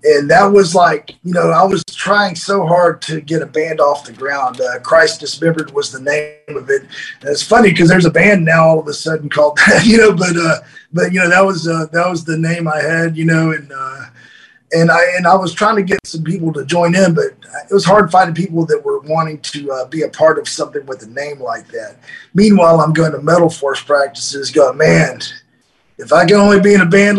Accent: American